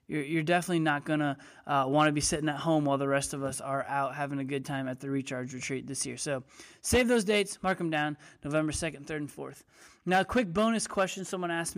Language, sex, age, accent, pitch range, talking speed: English, male, 20-39, American, 145-190 Hz, 240 wpm